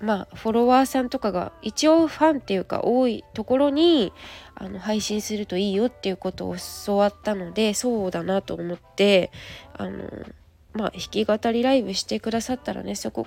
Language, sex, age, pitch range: Japanese, female, 20-39, 200-260 Hz